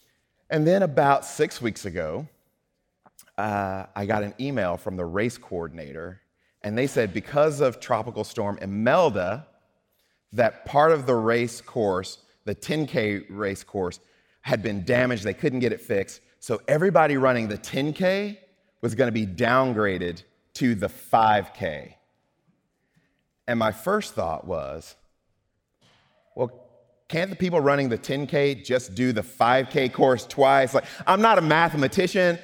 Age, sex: 30-49, male